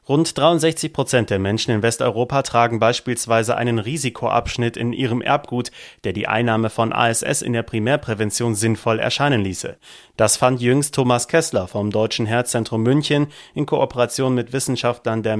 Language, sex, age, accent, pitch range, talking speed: German, male, 30-49, German, 115-135 Hz, 150 wpm